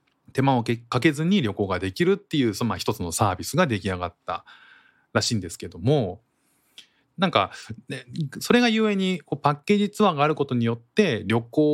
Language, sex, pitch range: Japanese, male, 95-145 Hz